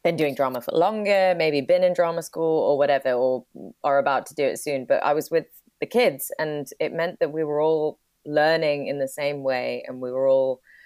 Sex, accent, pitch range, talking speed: female, British, 130-150 Hz, 225 wpm